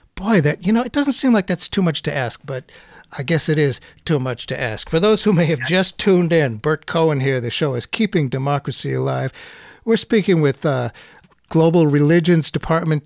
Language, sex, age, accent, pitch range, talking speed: English, male, 60-79, American, 130-180 Hz, 210 wpm